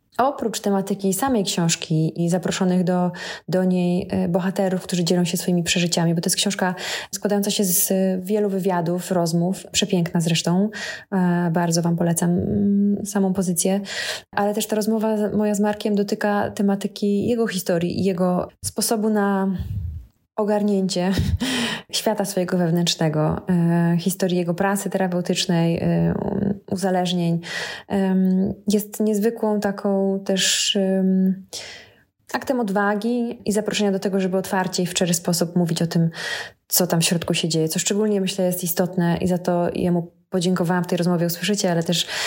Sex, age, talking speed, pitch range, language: female, 20-39, 135 wpm, 175-200 Hz, English